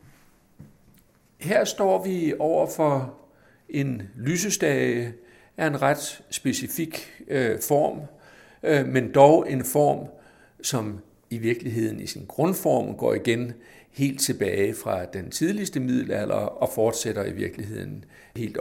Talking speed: 115 wpm